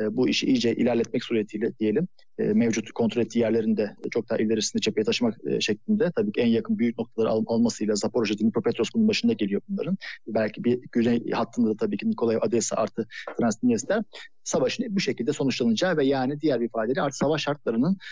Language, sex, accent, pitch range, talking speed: Turkish, male, native, 120-195 Hz, 175 wpm